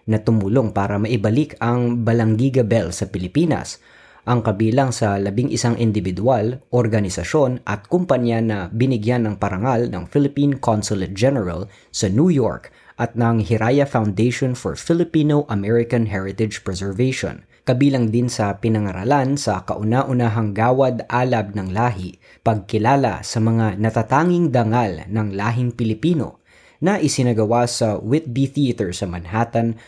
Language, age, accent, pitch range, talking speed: Filipino, 20-39, native, 105-130 Hz, 125 wpm